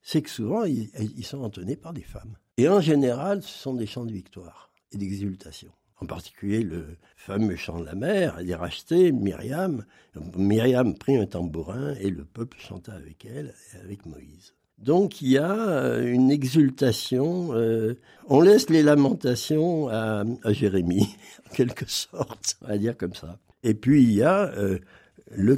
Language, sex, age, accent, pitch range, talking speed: French, male, 60-79, French, 95-130 Hz, 170 wpm